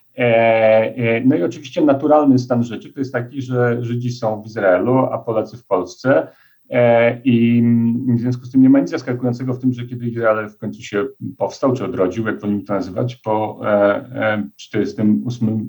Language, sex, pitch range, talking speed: Polish, male, 110-130 Hz, 170 wpm